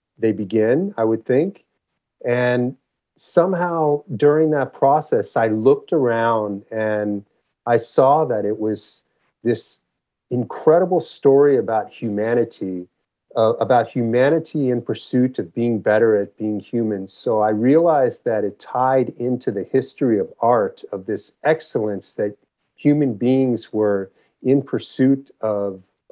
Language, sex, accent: English, male, American